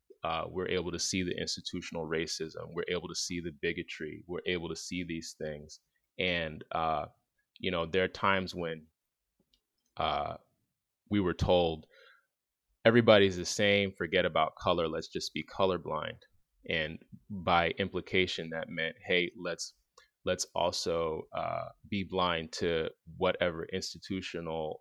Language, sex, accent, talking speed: English, male, American, 140 wpm